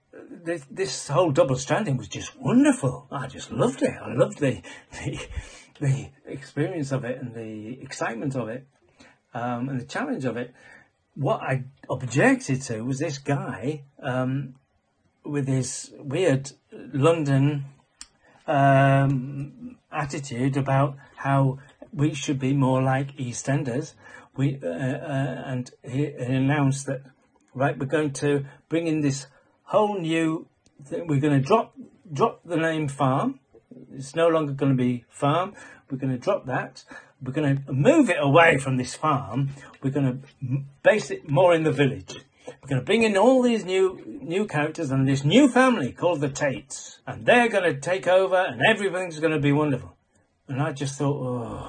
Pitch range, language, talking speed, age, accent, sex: 130-160 Hz, English, 165 wpm, 40-59, British, male